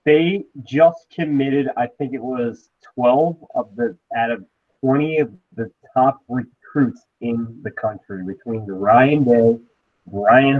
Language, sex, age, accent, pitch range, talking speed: English, male, 30-49, American, 115-150 Hz, 135 wpm